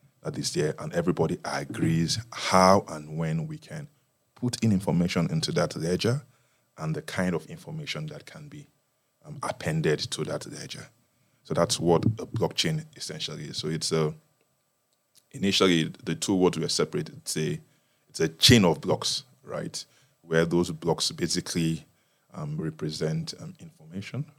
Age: 20-39